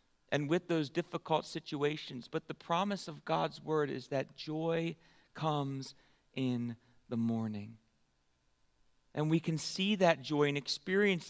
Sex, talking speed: male, 140 wpm